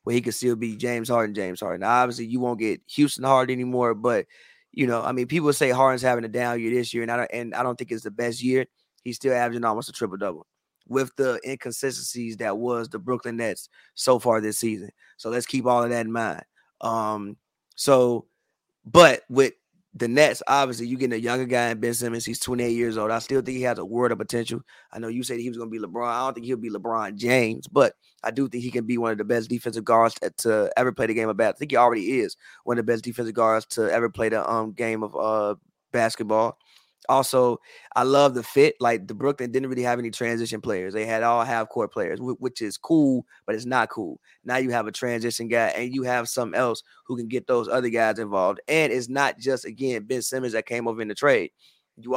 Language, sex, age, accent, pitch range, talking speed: English, male, 20-39, American, 115-130 Hz, 245 wpm